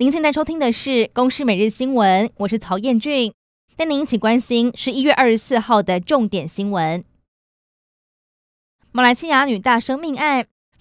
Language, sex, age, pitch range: Chinese, female, 20-39, 210-265 Hz